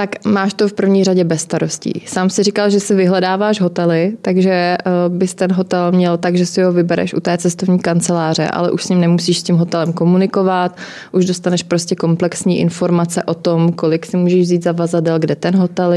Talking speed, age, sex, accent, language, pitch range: 205 wpm, 20-39, female, native, Czech, 170-185 Hz